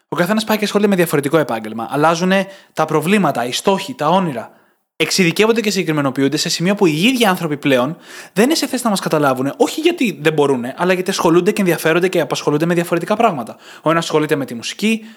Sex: male